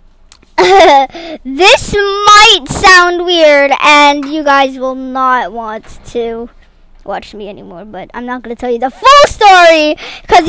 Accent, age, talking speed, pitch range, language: American, 20-39, 135 wpm, 260-350 Hz, English